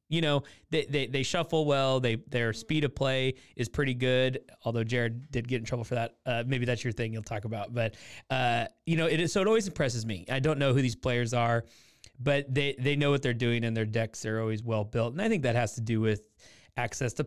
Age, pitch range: 30-49, 115-140 Hz